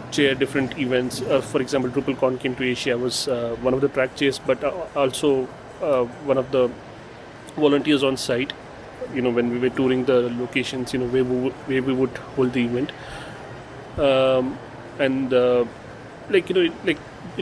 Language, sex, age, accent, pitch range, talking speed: English, male, 30-49, Indian, 125-140 Hz, 175 wpm